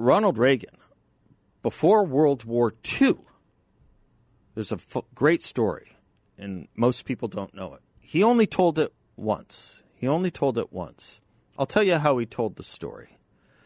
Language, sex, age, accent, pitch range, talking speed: English, male, 50-69, American, 95-125 Hz, 155 wpm